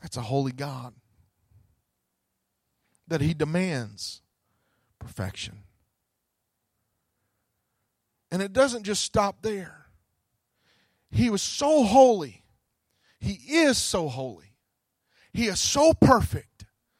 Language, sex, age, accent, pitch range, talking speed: English, male, 40-59, American, 135-225 Hz, 90 wpm